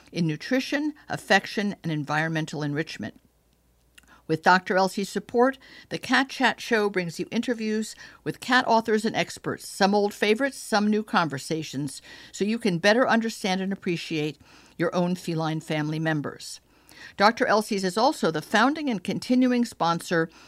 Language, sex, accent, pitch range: English, female, American, 160-220 Hz